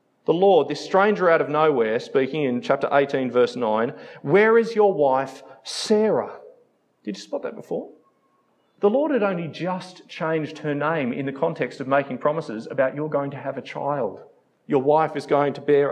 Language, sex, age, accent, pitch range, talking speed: English, male, 40-59, Australian, 145-210 Hz, 190 wpm